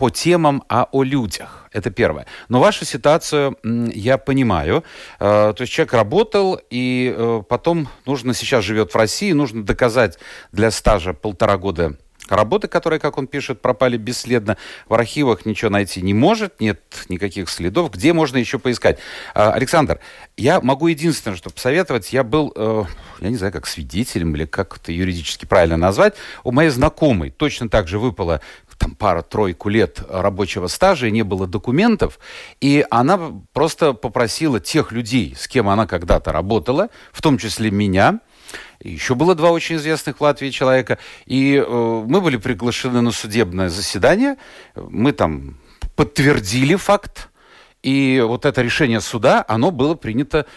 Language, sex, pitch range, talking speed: Russian, male, 100-145 Hz, 150 wpm